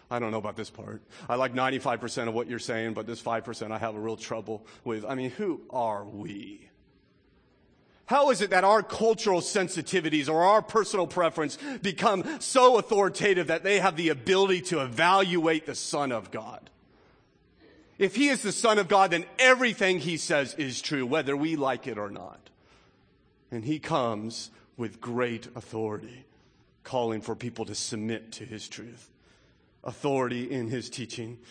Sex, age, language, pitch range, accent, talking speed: male, 40-59, English, 115-155 Hz, American, 170 wpm